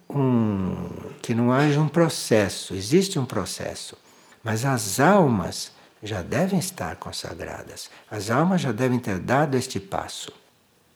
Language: Portuguese